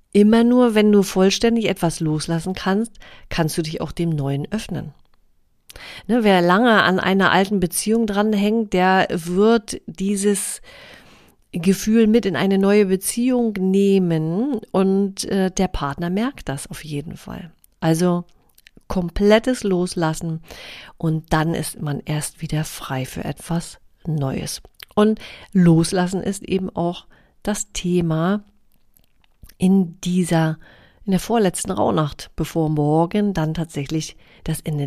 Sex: female